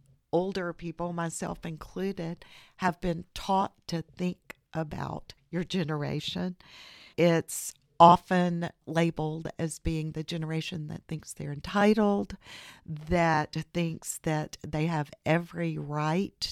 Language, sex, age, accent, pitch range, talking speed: English, female, 50-69, American, 160-190 Hz, 110 wpm